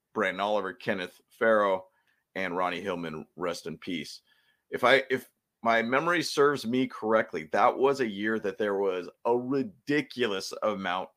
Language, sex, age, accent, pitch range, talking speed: English, male, 30-49, American, 100-130 Hz, 145 wpm